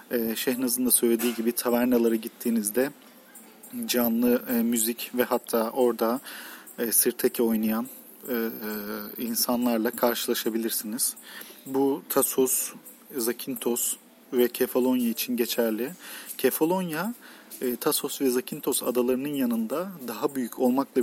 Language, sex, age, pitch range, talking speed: Turkish, male, 40-59, 115-135 Hz, 105 wpm